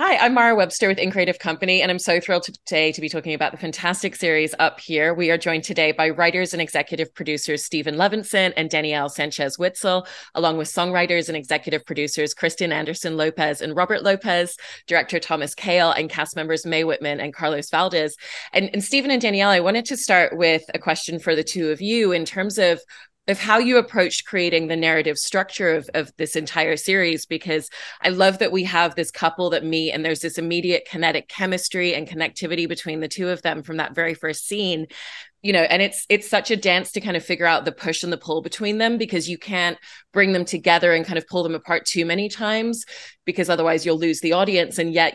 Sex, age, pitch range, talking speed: female, 30-49, 155-180 Hz, 215 wpm